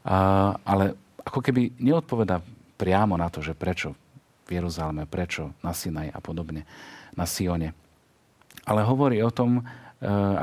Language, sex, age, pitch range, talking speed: Slovak, male, 40-59, 90-115 Hz, 140 wpm